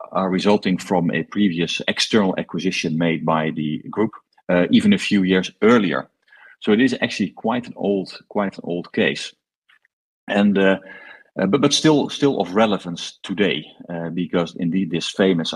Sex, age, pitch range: male, 40-59, 85-100 Hz